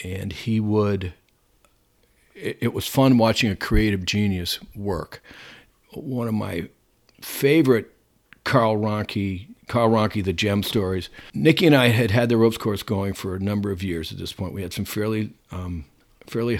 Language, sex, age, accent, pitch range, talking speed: English, male, 50-69, American, 95-120 Hz, 165 wpm